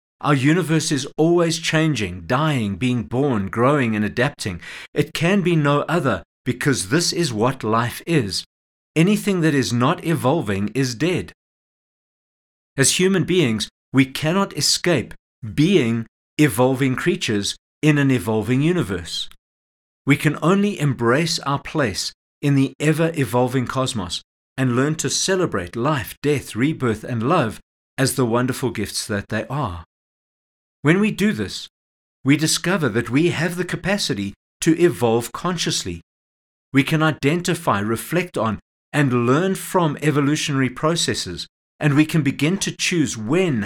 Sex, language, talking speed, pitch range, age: male, English, 135 wpm, 115-160 Hz, 50-69